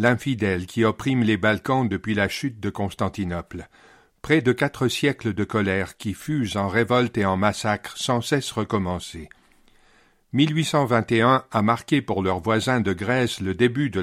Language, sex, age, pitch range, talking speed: English, male, 50-69, 100-130 Hz, 160 wpm